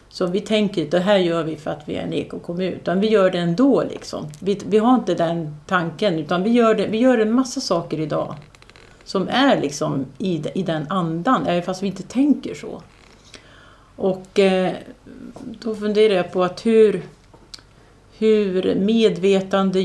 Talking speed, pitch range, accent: 175 wpm, 160-200 Hz, native